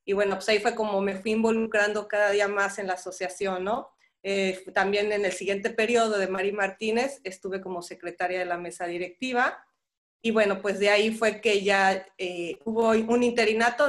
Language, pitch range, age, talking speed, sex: Spanish, 190-230 Hz, 30-49, 190 wpm, female